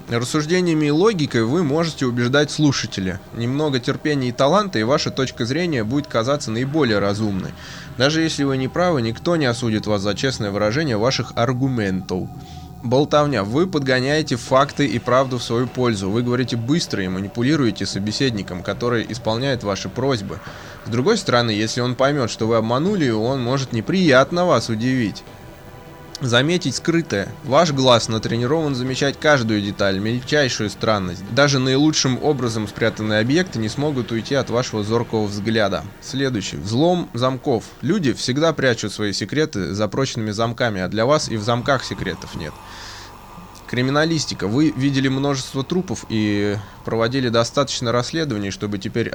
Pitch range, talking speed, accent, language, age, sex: 110-140 Hz, 145 wpm, native, Russian, 20-39, male